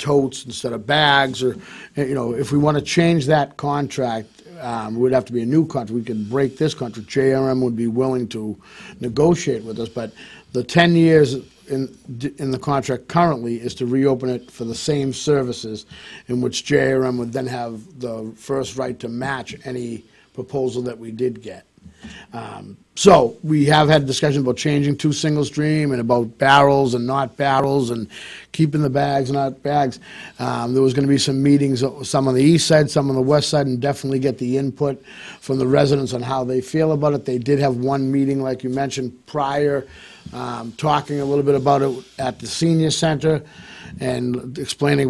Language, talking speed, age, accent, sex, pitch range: English, 195 wpm, 50-69, American, male, 125-145 Hz